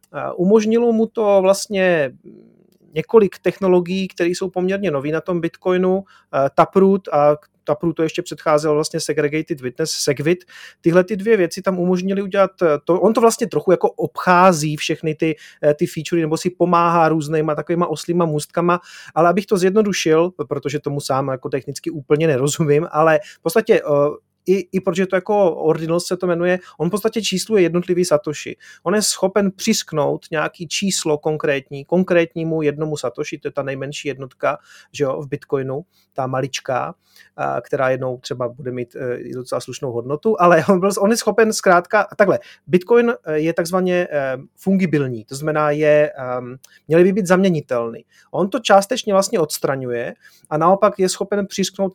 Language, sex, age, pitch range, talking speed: Czech, male, 30-49, 150-190 Hz, 160 wpm